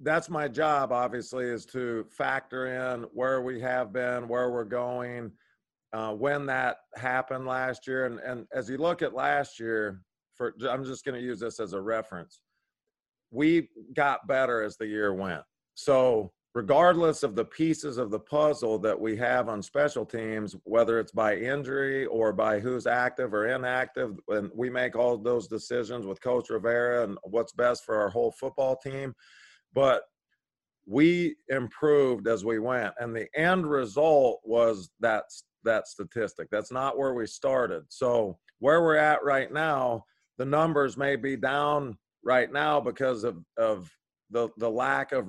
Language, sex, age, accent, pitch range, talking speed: English, male, 40-59, American, 115-140 Hz, 165 wpm